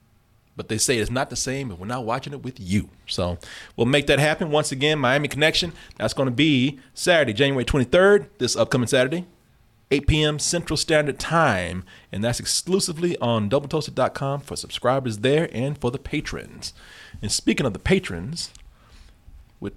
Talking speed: 165 wpm